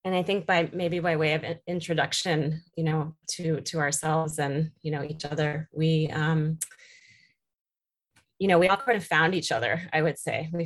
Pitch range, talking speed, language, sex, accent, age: 150-170 Hz, 190 wpm, English, female, American, 30-49